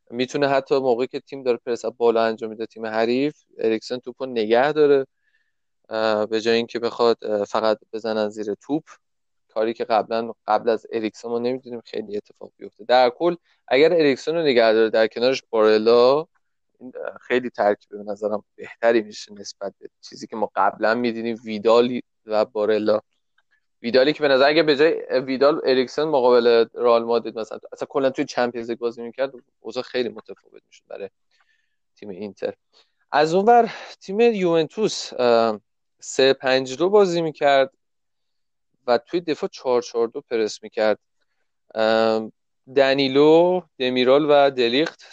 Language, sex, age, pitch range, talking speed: Persian, male, 20-39, 115-160 Hz, 140 wpm